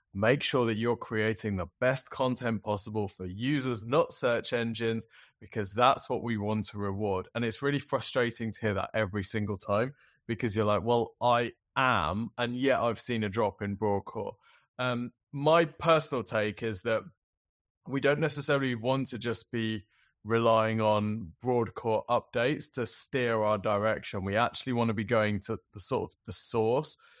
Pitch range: 105-125 Hz